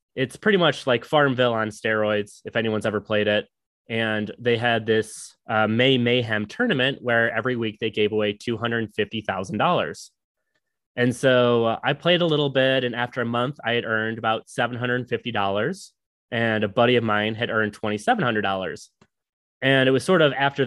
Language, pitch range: English, 105-125 Hz